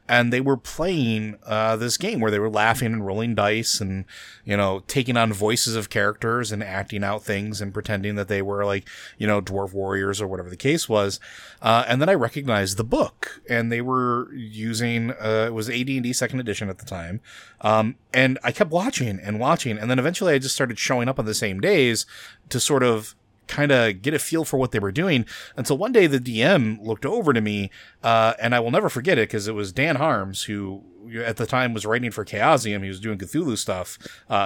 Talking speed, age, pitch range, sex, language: 225 wpm, 30-49, 105-125 Hz, male, English